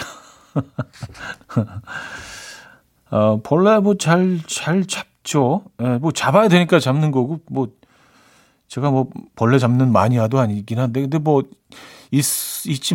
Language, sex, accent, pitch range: Korean, male, native, 115-160 Hz